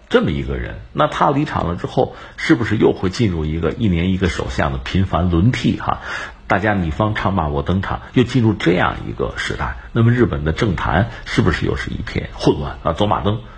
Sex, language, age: male, Chinese, 60-79